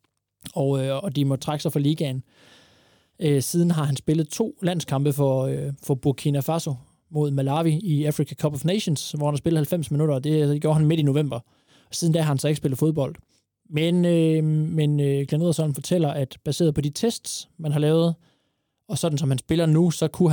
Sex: male